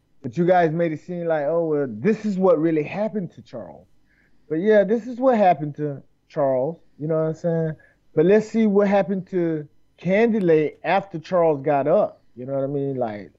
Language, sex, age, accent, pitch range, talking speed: English, male, 30-49, American, 145-190 Hz, 205 wpm